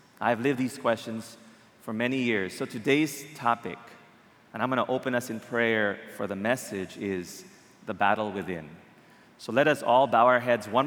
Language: English